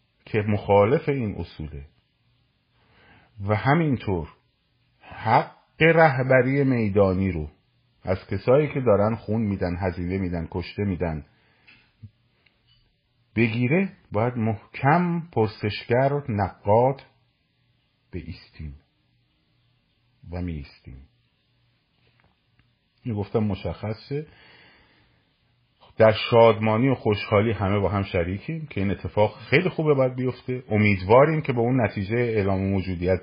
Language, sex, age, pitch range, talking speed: Persian, male, 50-69, 100-125 Hz, 100 wpm